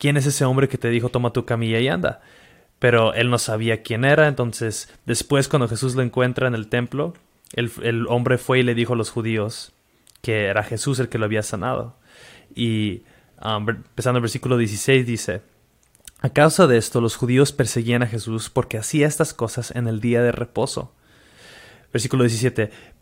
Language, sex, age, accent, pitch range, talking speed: Spanish, male, 20-39, Mexican, 110-130 Hz, 185 wpm